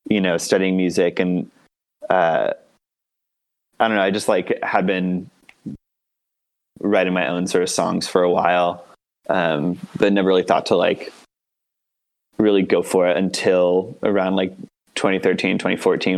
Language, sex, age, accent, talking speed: English, male, 20-39, American, 140 wpm